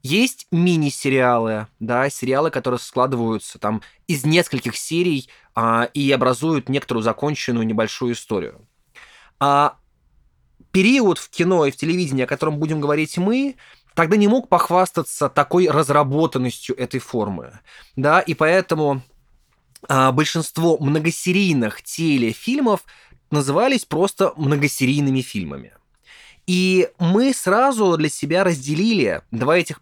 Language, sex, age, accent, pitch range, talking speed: Russian, male, 20-39, native, 130-180 Hz, 110 wpm